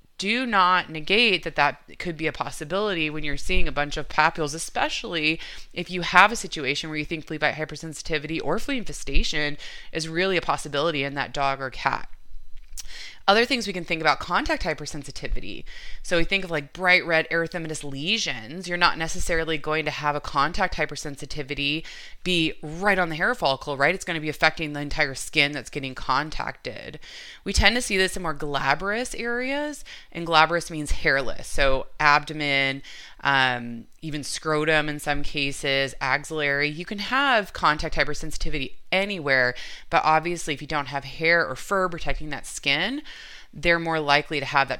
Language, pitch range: English, 140-175 Hz